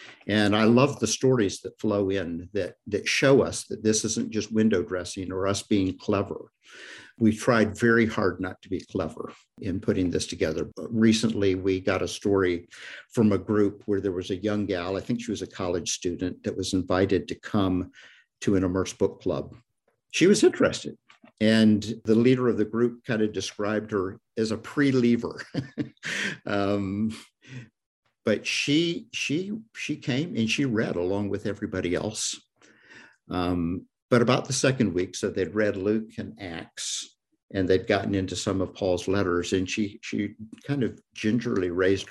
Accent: American